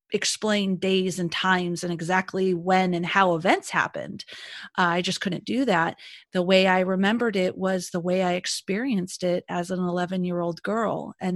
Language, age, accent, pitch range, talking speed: English, 30-49, American, 180-205 Hz, 185 wpm